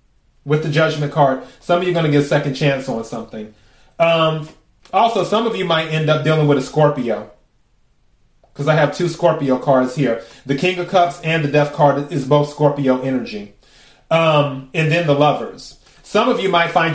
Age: 30-49